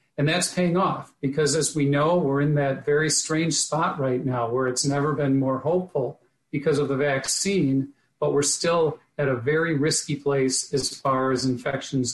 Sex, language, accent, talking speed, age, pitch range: male, English, American, 190 wpm, 50-69, 130-150 Hz